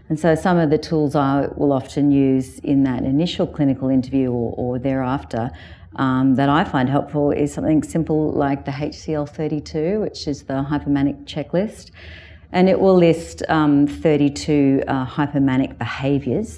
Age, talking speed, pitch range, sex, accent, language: 40-59, 160 wpm, 130-150 Hz, female, Australian, English